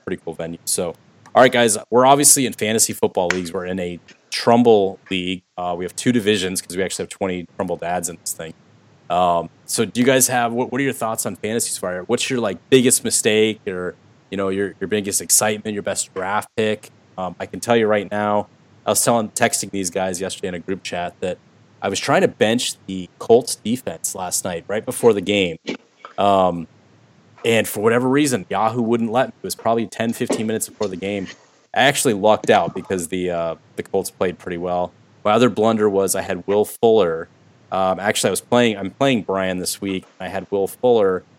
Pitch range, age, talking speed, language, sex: 95-115 Hz, 30-49, 215 wpm, English, male